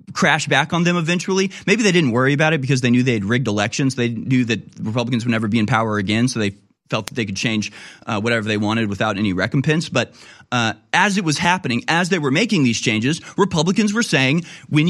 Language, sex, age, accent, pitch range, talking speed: English, male, 30-49, American, 120-155 Hz, 235 wpm